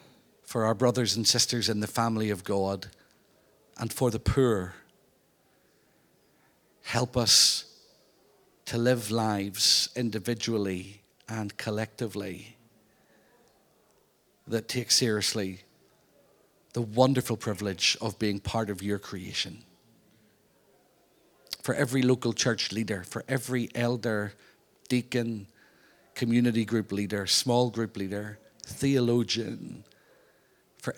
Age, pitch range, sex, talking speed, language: 50-69, 105-120 Hz, male, 100 wpm, English